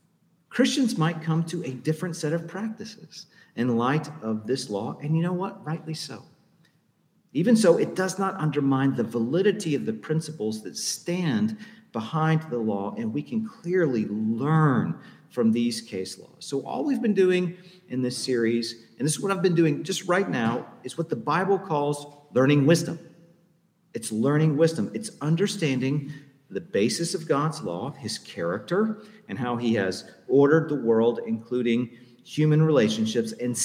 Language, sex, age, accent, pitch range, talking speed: English, male, 40-59, American, 120-180 Hz, 165 wpm